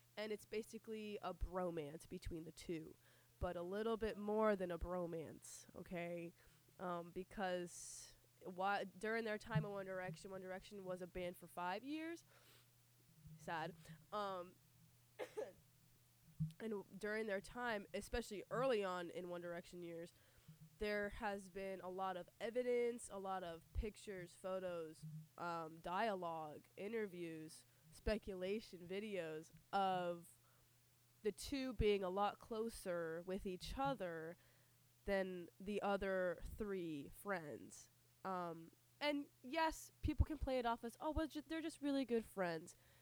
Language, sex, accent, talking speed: English, female, American, 130 wpm